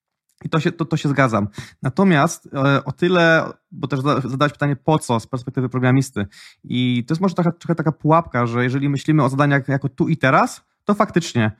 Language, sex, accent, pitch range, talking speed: Polish, male, native, 130-155 Hz, 195 wpm